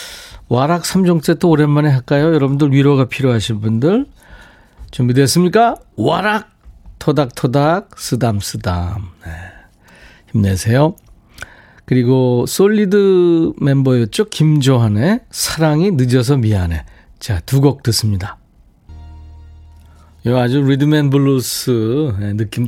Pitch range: 100-155 Hz